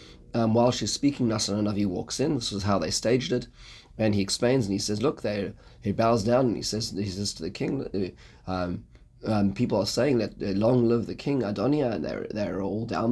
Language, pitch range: English, 100-125 Hz